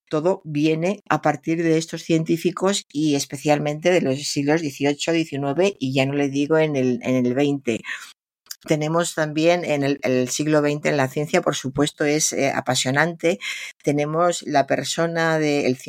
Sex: female